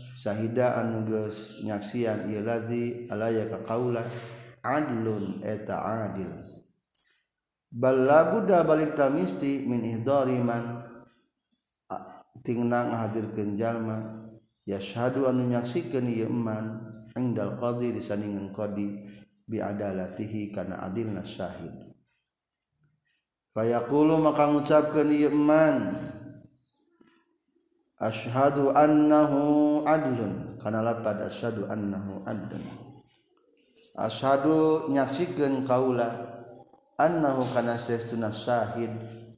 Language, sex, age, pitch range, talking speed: Indonesian, male, 40-59, 110-140 Hz, 80 wpm